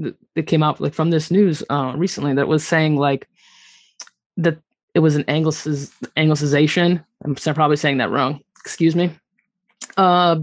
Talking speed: 150 wpm